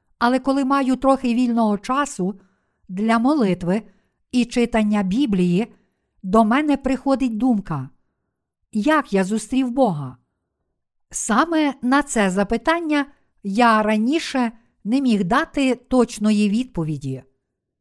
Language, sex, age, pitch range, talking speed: Ukrainian, female, 50-69, 200-260 Hz, 105 wpm